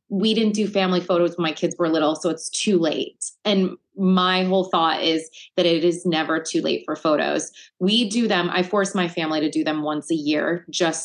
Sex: female